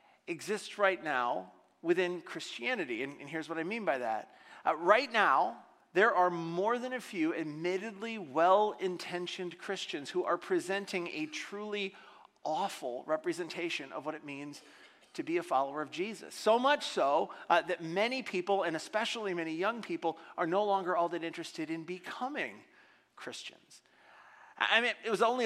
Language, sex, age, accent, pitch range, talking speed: English, male, 40-59, American, 165-215 Hz, 160 wpm